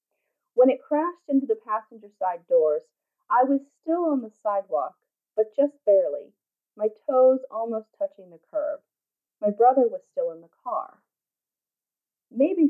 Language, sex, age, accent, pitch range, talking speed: English, female, 30-49, American, 210-305 Hz, 145 wpm